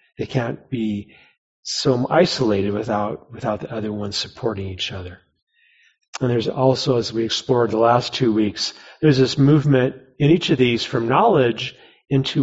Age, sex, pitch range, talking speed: 40-59, male, 100-130 Hz, 160 wpm